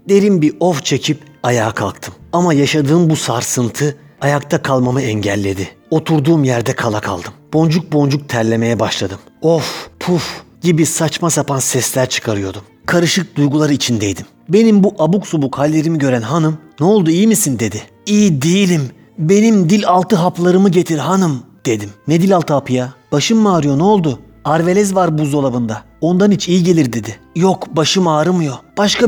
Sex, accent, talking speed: male, native, 155 wpm